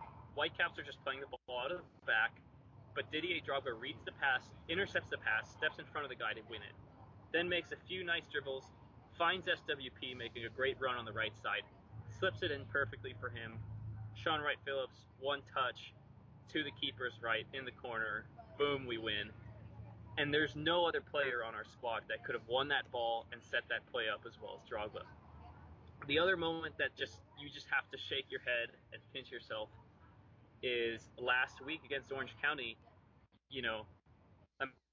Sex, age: male, 20-39